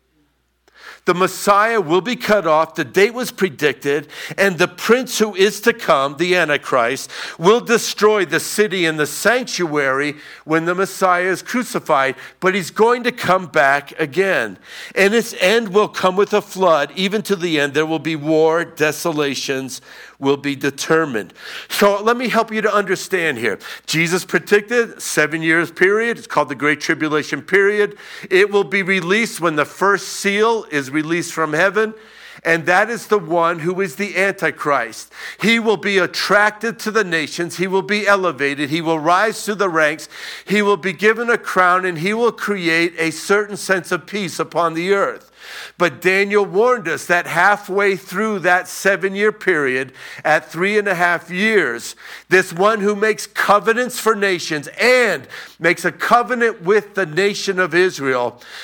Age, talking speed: 50-69, 170 wpm